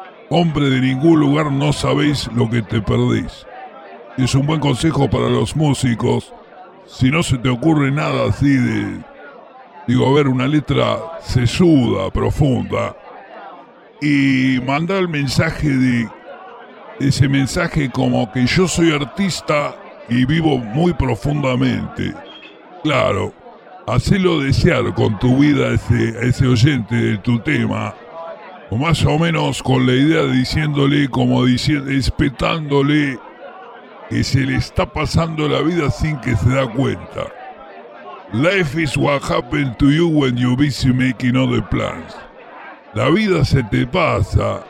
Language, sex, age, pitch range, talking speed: English, female, 50-69, 125-150 Hz, 135 wpm